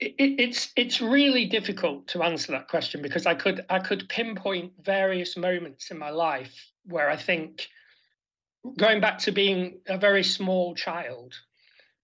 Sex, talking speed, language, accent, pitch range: male, 155 wpm, Swedish, British, 165-200 Hz